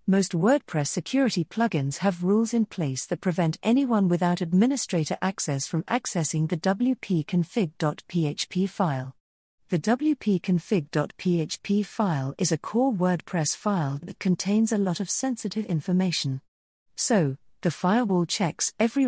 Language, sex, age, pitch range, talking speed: English, female, 40-59, 155-210 Hz, 125 wpm